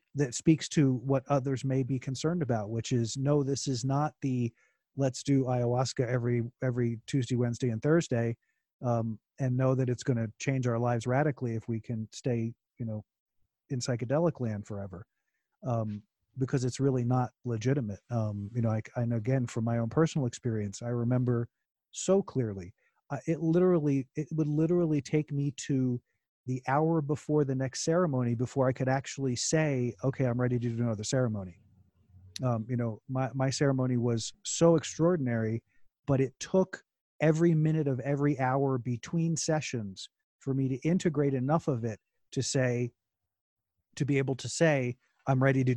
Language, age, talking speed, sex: English, 40-59, 170 wpm, male